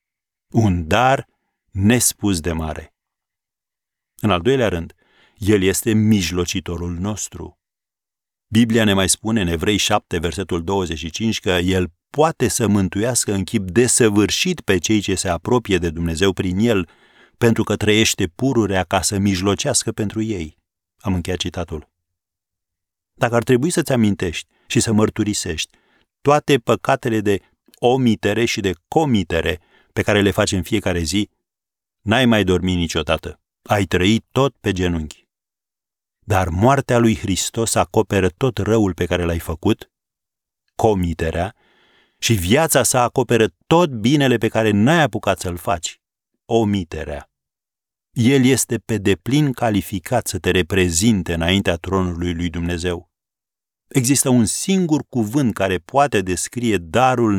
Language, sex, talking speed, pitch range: Romanian, male, 135 wpm, 90-115 Hz